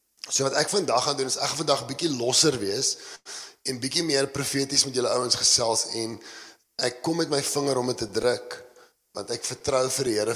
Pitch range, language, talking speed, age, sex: 115-145 Hz, English, 205 wpm, 30-49, male